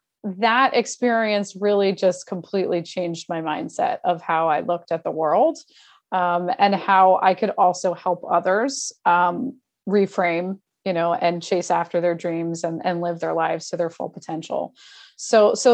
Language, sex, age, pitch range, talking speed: English, female, 30-49, 180-235 Hz, 165 wpm